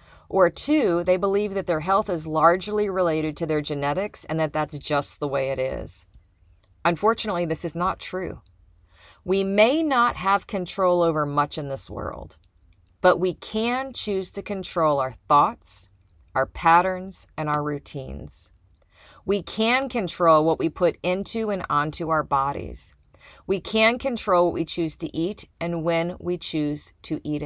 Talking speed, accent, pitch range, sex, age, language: 160 wpm, American, 145-195 Hz, female, 40-59, English